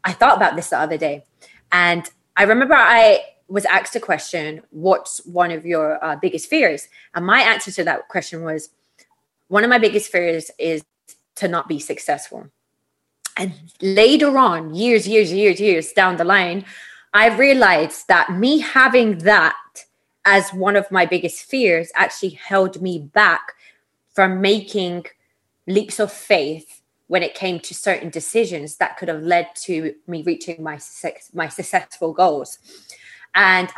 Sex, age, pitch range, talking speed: female, 20-39, 175-225 Hz, 160 wpm